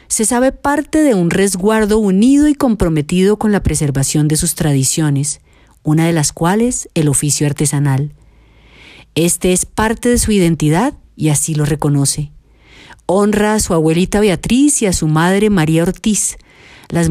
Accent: Colombian